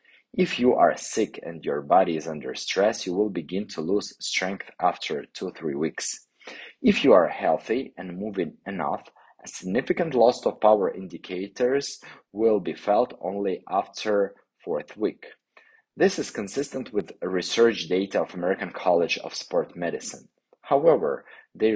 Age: 30-49